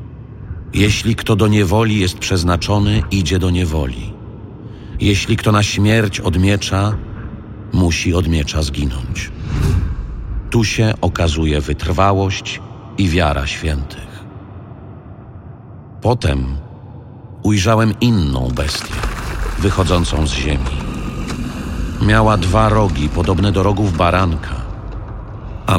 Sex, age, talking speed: male, 50-69, 90 wpm